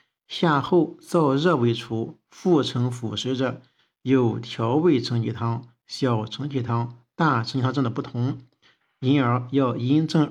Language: Chinese